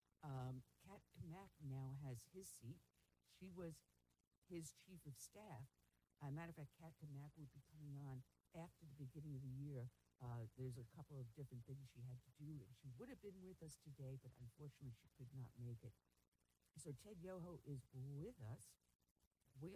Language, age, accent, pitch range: English, 60-79, American, 125-165 Hz